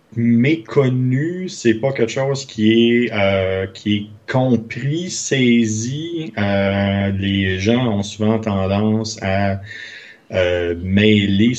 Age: 30-49